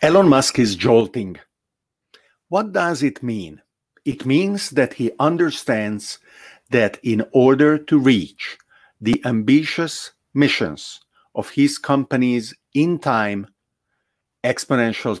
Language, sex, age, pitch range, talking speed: English, male, 50-69, 115-150 Hz, 105 wpm